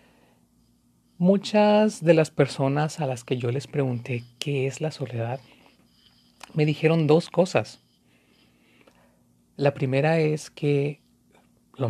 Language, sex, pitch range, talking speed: Spanish, male, 125-155 Hz, 115 wpm